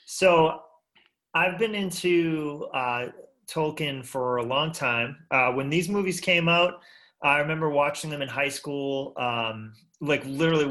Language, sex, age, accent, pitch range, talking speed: English, male, 30-49, American, 115-150 Hz, 145 wpm